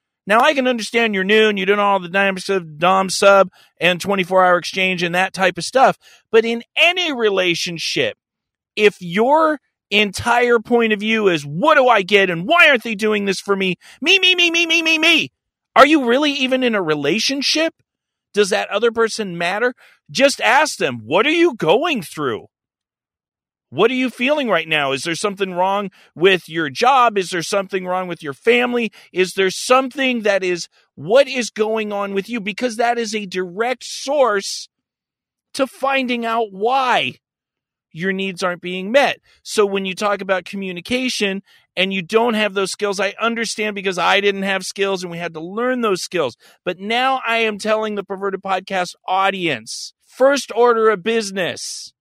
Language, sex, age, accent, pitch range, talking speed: English, male, 40-59, American, 190-245 Hz, 180 wpm